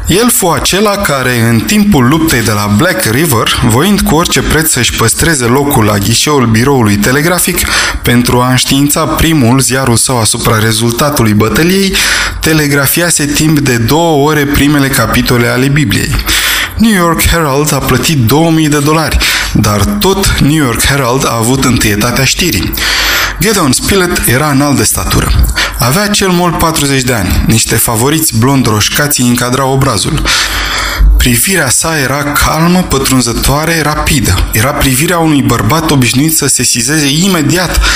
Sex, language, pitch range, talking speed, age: male, Romanian, 120-155 Hz, 140 wpm, 20-39